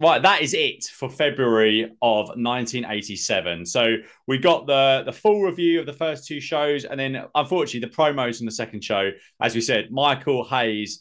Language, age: English, 30-49